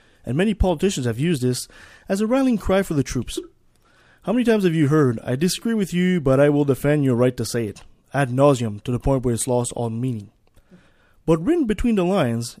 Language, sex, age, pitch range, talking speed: English, male, 20-39, 120-180 Hz, 225 wpm